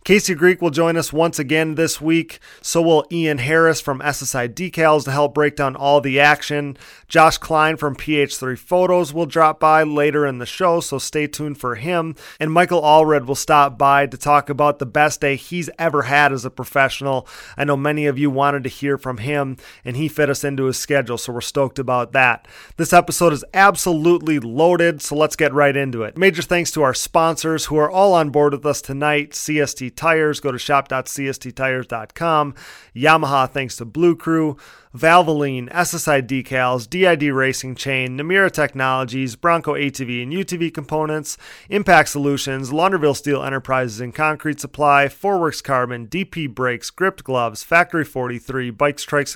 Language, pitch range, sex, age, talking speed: English, 135-160 Hz, male, 30-49, 175 wpm